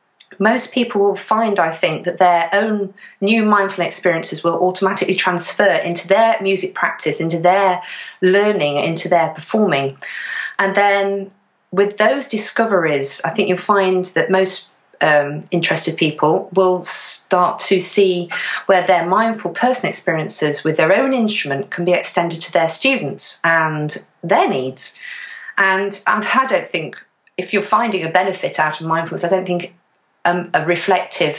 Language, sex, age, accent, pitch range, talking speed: English, female, 40-59, British, 165-195 Hz, 150 wpm